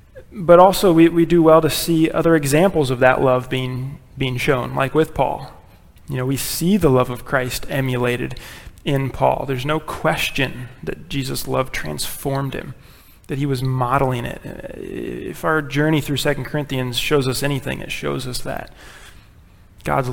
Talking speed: 170 wpm